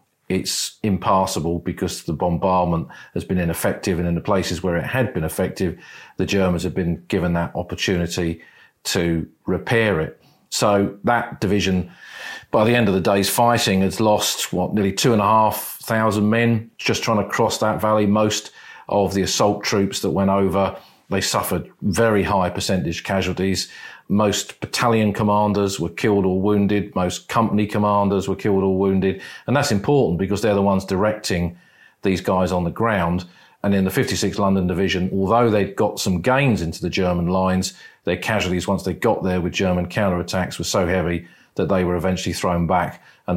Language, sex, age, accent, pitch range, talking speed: English, male, 40-59, British, 90-105 Hz, 170 wpm